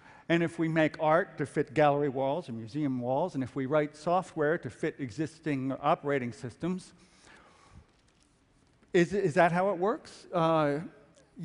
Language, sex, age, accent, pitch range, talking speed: Russian, male, 50-69, American, 145-190 Hz, 150 wpm